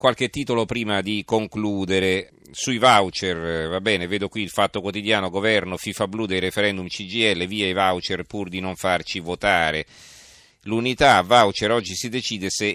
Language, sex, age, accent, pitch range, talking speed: Italian, male, 40-59, native, 95-115 Hz, 160 wpm